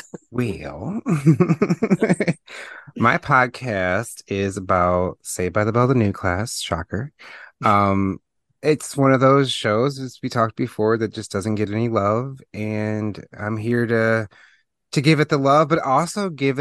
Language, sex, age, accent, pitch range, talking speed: English, male, 30-49, American, 95-125 Hz, 150 wpm